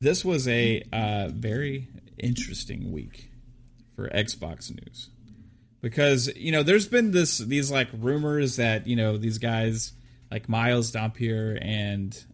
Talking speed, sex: 135 wpm, male